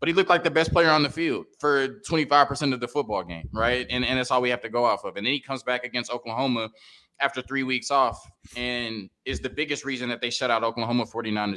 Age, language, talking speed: 20-39, English, 255 wpm